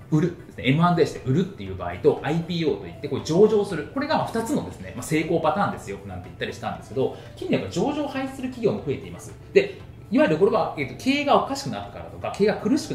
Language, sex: Japanese, male